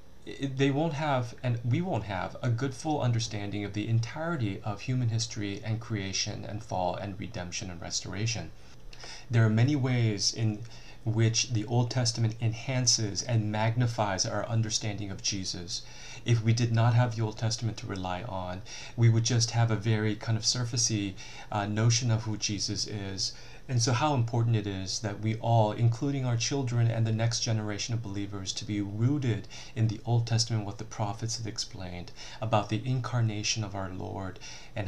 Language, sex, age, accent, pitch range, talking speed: English, male, 30-49, American, 100-115 Hz, 180 wpm